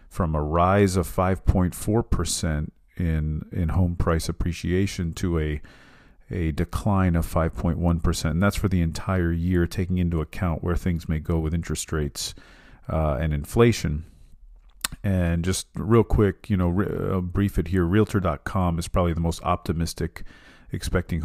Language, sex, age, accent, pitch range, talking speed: English, male, 40-59, American, 80-95 Hz, 145 wpm